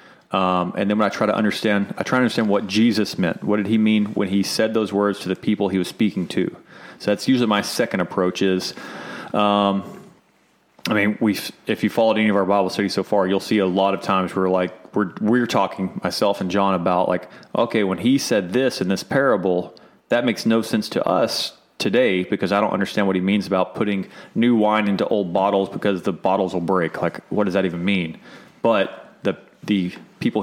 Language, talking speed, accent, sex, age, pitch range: English, 220 wpm, American, male, 30-49, 95-110 Hz